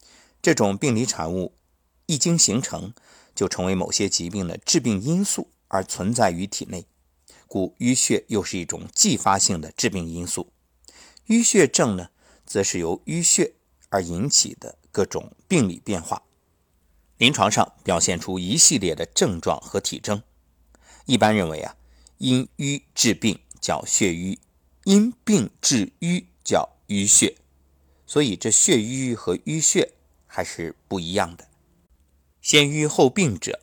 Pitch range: 80-130 Hz